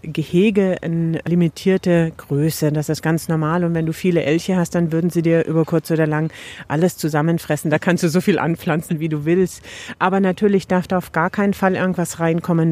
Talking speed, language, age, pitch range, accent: 205 wpm, German, 40-59, 155-190 Hz, German